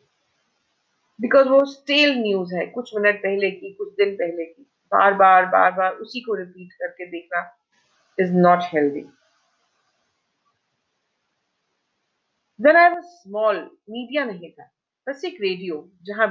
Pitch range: 175-275 Hz